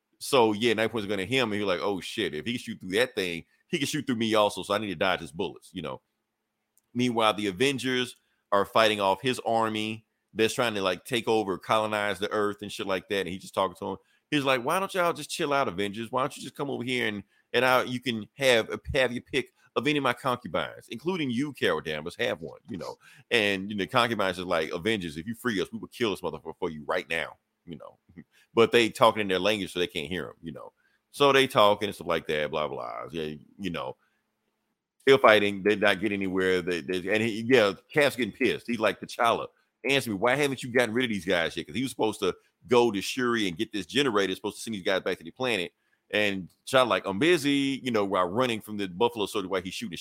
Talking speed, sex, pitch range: 255 wpm, male, 100-130 Hz